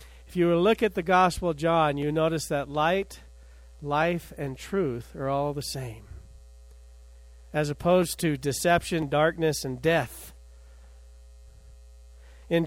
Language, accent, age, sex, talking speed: English, American, 50-69, male, 130 wpm